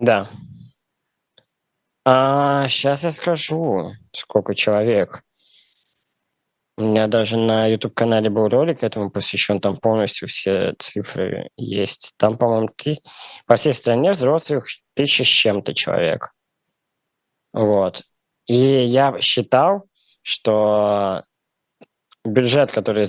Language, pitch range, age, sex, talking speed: Russian, 100-125 Hz, 20-39, male, 100 wpm